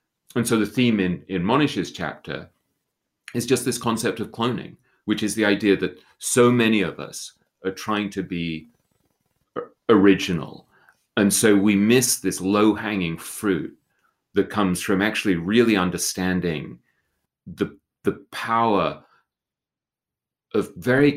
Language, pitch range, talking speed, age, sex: English, 85-105 Hz, 135 wpm, 30-49, male